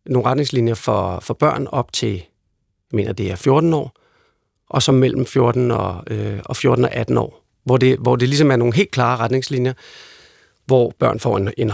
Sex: male